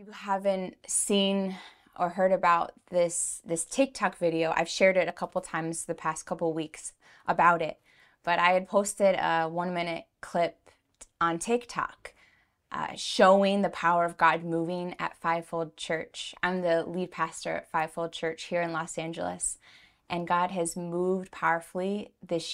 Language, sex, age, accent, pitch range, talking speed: English, female, 20-39, American, 165-185 Hz, 155 wpm